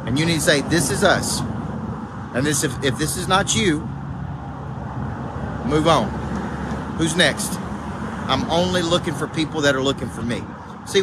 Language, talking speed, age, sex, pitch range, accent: English, 170 wpm, 40-59, male, 125-165 Hz, American